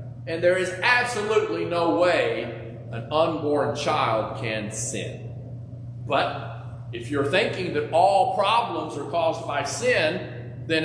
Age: 40-59